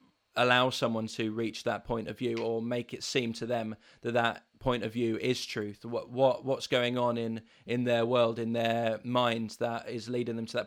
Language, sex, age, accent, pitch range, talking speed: English, male, 20-39, British, 110-120 Hz, 210 wpm